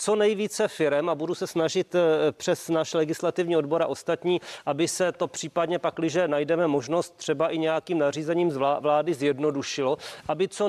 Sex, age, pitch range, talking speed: male, 40-59, 155-195 Hz, 155 wpm